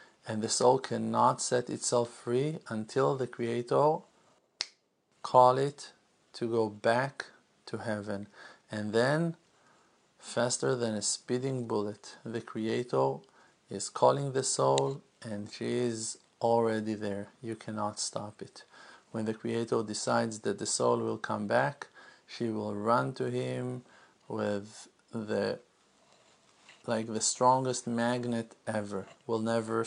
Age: 50-69